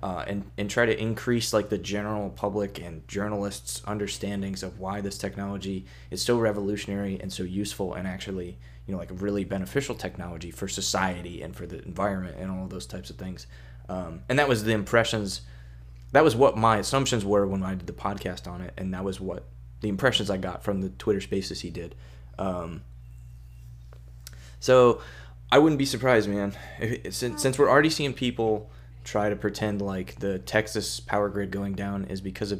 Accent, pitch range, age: American, 90-105 Hz, 20-39